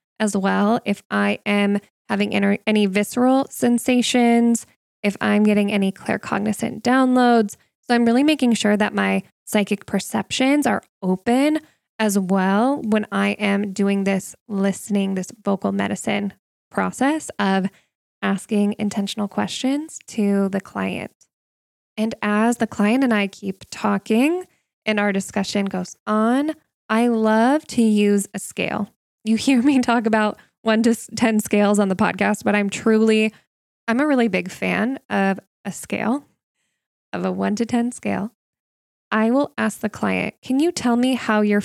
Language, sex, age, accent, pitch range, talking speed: English, female, 10-29, American, 200-235 Hz, 150 wpm